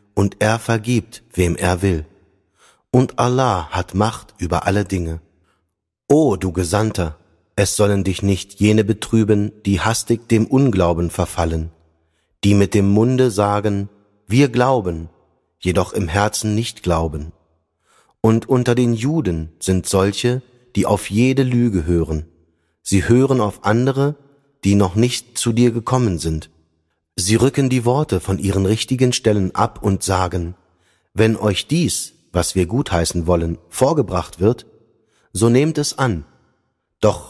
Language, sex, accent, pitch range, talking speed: German, male, German, 90-115 Hz, 140 wpm